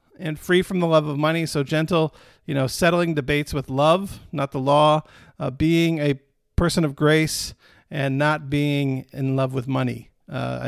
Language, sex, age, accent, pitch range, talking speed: English, male, 50-69, American, 140-175 Hz, 180 wpm